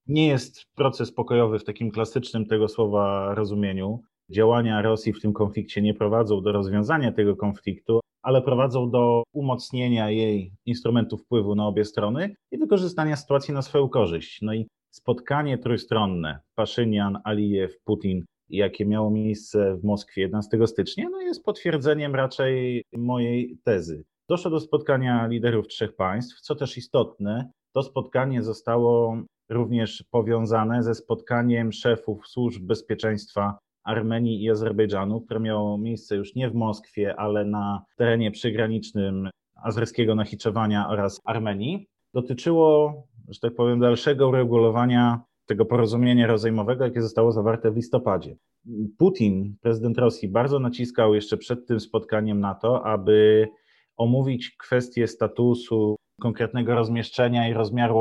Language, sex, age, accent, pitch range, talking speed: Polish, male, 30-49, native, 105-120 Hz, 130 wpm